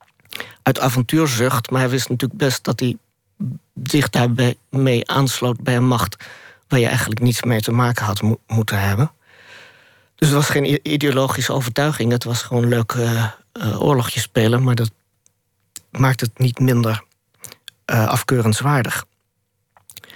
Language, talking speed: Dutch, 145 wpm